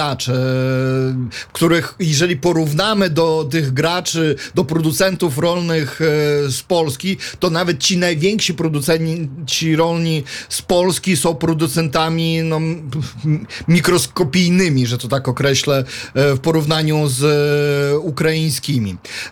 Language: Polish